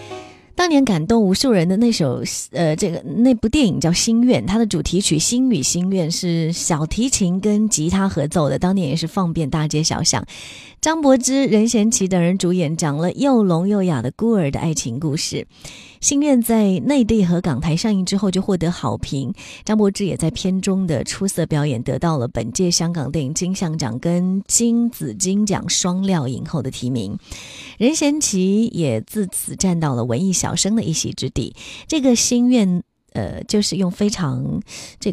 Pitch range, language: 160-210 Hz, Chinese